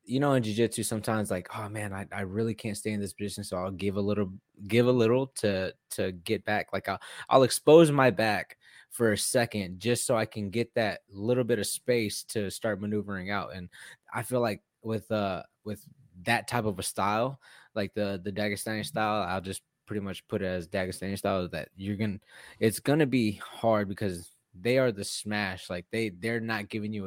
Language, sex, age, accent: English, male, 20-39, American